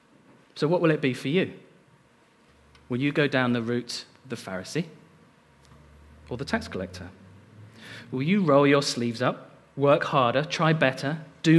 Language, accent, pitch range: English, British, 115-155 Hz